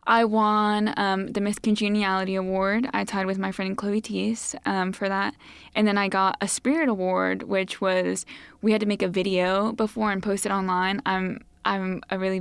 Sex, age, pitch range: female, 10-29, 185-210 Hz